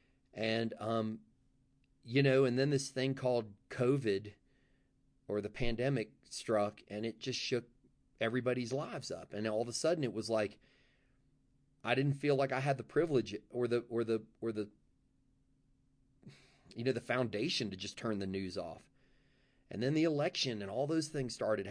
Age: 30-49